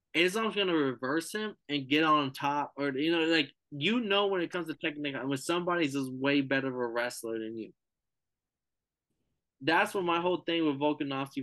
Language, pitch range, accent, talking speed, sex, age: English, 130-165 Hz, American, 190 wpm, male, 20-39